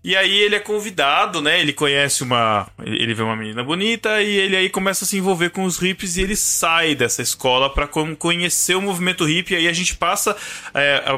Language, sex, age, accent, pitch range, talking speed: Portuguese, male, 20-39, Brazilian, 120-165 Hz, 220 wpm